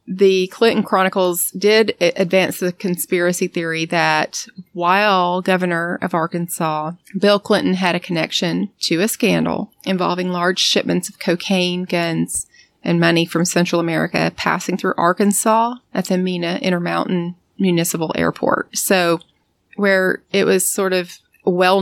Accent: American